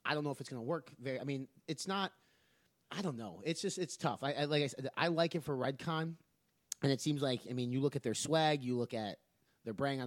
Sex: male